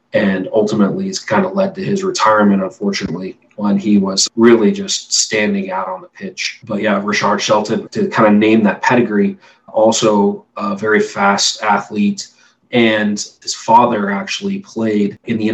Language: English